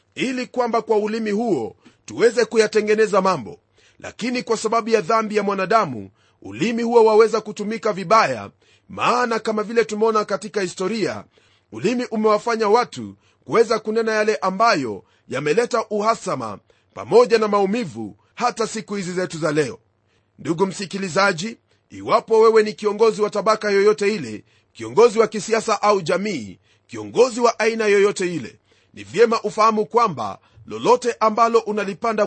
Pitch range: 190-225 Hz